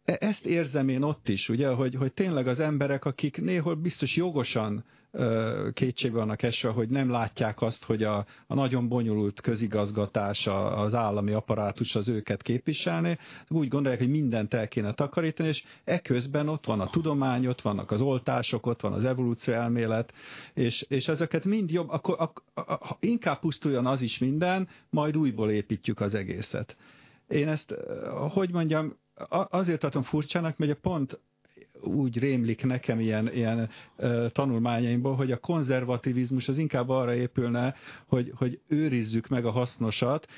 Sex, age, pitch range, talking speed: male, 50-69, 115-145 Hz, 150 wpm